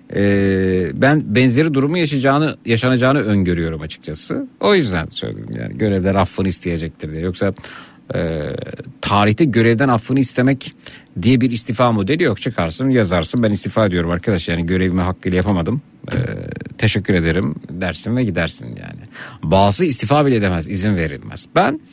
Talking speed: 135 wpm